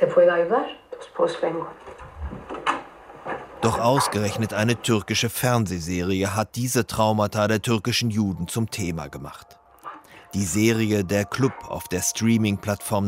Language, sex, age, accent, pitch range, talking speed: German, male, 30-49, German, 100-120 Hz, 95 wpm